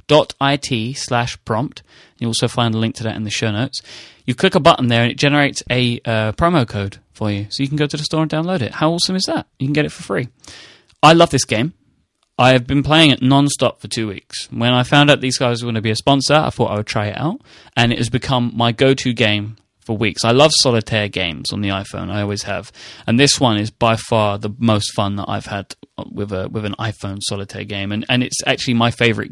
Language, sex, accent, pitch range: English, male, British, 105-135 Hz